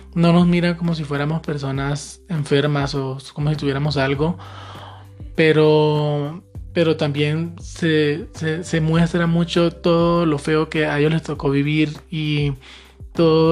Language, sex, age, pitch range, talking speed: Spanish, male, 20-39, 140-160 Hz, 140 wpm